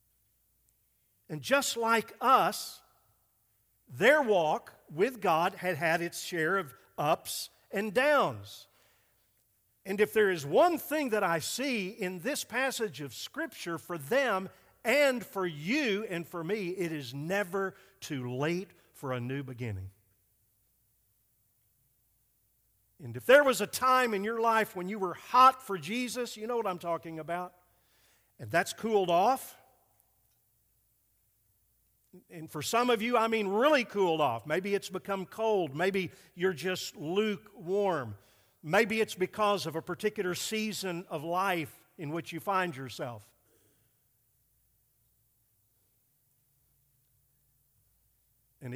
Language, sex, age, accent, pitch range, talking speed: English, male, 50-69, American, 120-200 Hz, 130 wpm